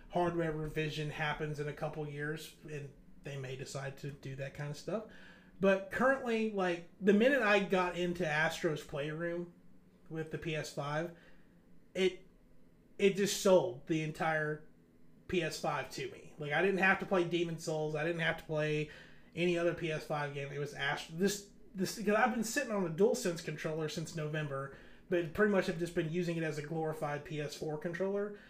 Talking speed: 180 wpm